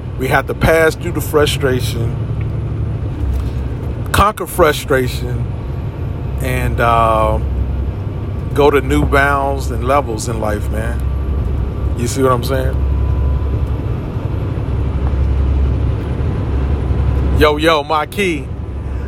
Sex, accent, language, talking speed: male, American, English, 90 wpm